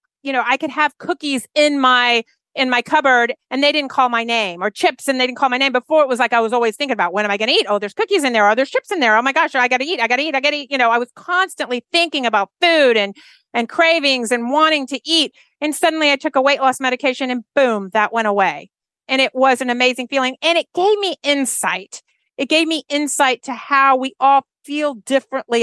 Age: 40-59